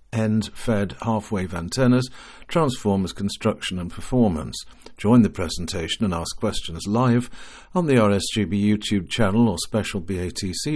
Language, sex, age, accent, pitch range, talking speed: English, male, 60-79, British, 90-115 Hz, 130 wpm